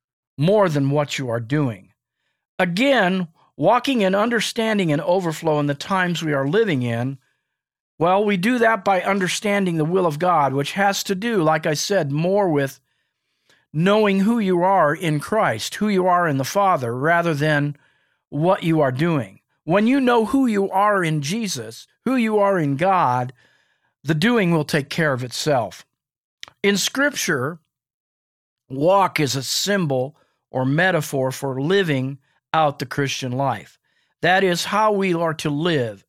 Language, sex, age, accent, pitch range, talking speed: English, male, 50-69, American, 140-190 Hz, 160 wpm